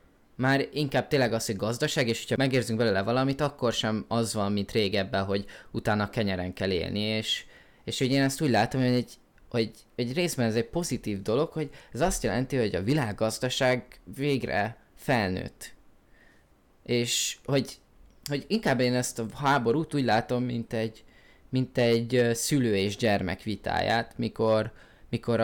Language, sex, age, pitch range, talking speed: Hungarian, male, 20-39, 105-130 Hz, 160 wpm